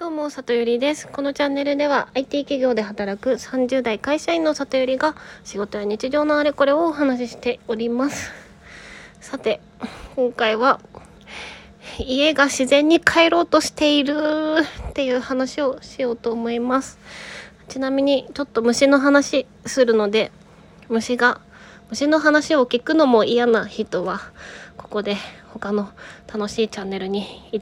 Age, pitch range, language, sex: 20-39, 205-275 Hz, Japanese, female